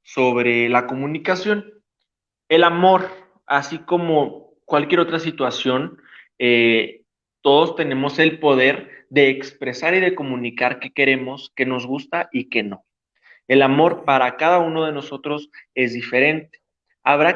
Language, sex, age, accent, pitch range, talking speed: Spanish, male, 30-49, Mexican, 125-170 Hz, 130 wpm